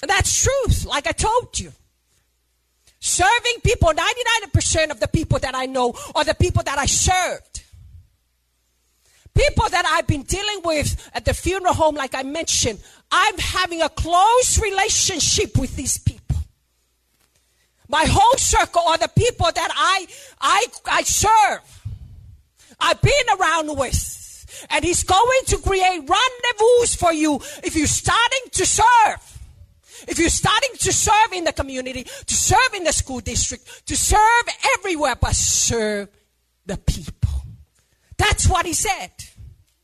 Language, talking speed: English, 145 wpm